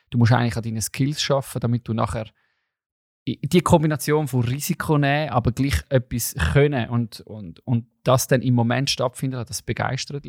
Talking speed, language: 175 wpm, German